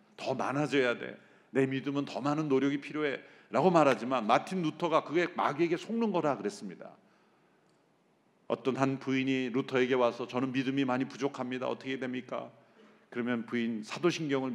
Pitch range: 130-200 Hz